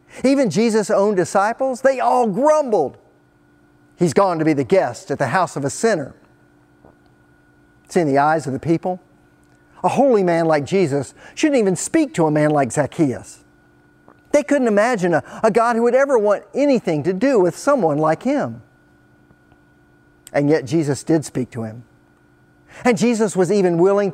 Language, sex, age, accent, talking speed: English, male, 40-59, American, 170 wpm